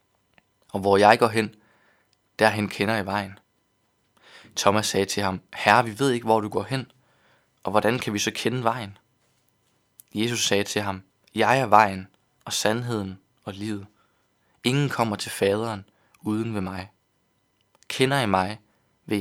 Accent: native